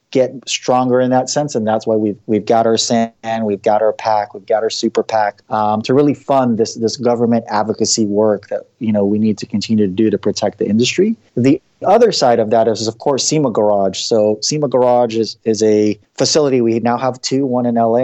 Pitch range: 110-125 Hz